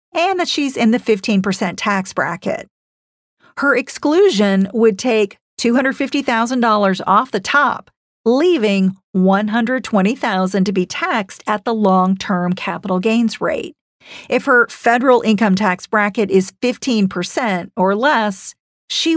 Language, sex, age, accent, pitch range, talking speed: English, female, 50-69, American, 190-245 Hz, 120 wpm